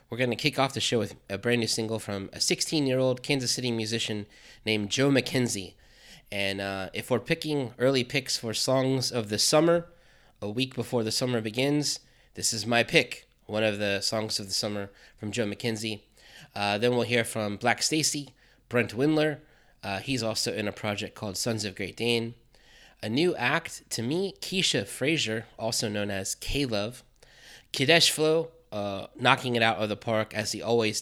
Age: 20-39